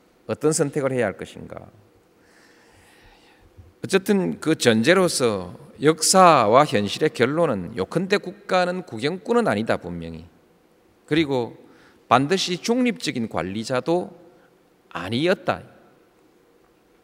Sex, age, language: male, 40-59, Korean